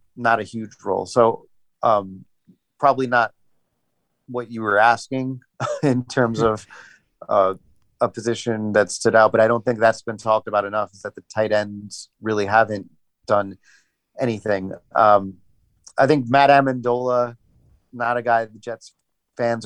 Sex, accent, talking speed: male, American, 155 wpm